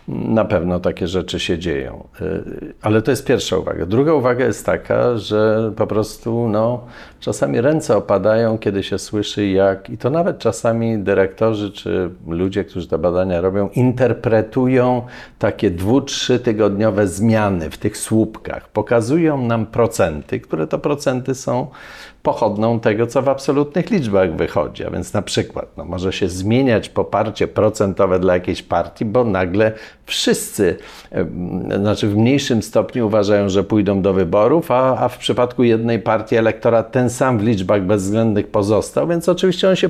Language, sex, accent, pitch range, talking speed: Polish, male, native, 100-125 Hz, 155 wpm